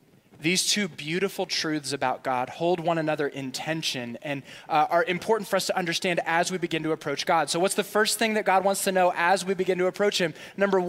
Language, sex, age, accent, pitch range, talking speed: English, male, 20-39, American, 175-220 Hz, 230 wpm